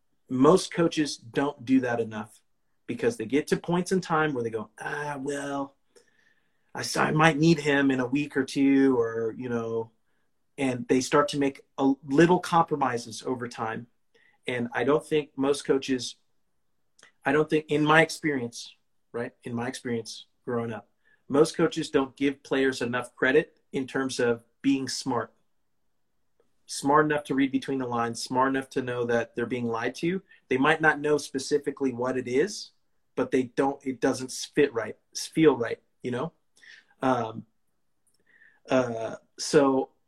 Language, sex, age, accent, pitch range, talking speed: English, male, 40-59, American, 125-150 Hz, 160 wpm